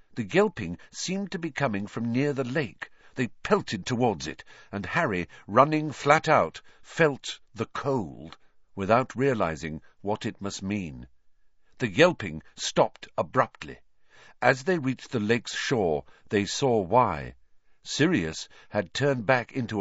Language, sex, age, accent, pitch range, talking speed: English, male, 50-69, British, 95-145 Hz, 140 wpm